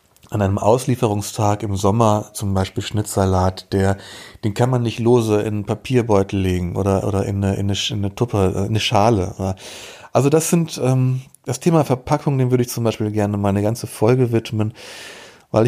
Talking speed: 185 wpm